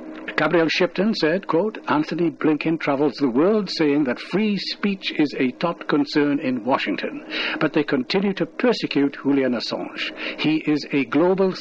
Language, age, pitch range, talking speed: English, 60-79, 140-195 Hz, 155 wpm